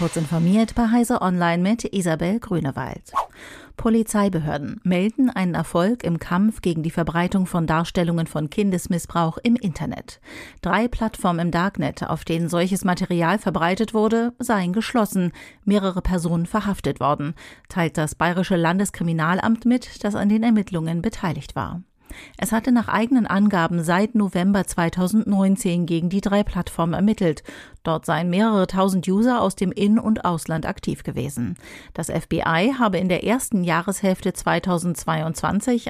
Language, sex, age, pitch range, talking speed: German, female, 40-59, 170-210 Hz, 140 wpm